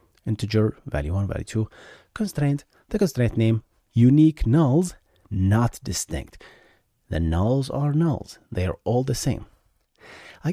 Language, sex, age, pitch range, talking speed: English, male, 30-49, 85-115 Hz, 130 wpm